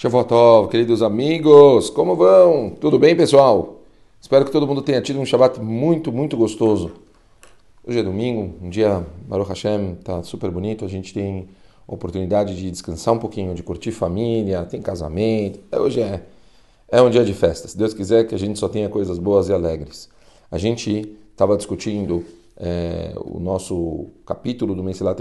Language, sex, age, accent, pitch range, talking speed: Portuguese, male, 40-59, Brazilian, 95-115 Hz, 175 wpm